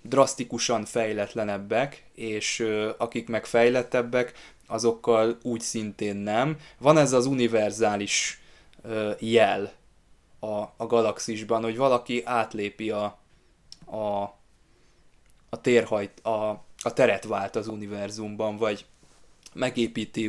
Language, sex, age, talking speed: Hungarian, male, 20-39, 100 wpm